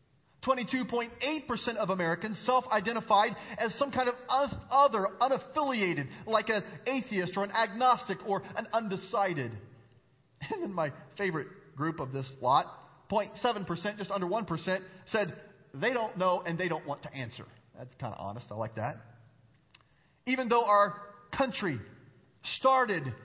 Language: English